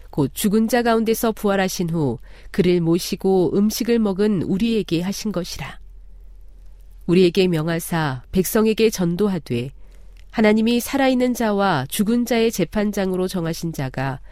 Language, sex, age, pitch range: Korean, female, 40-59, 135-215 Hz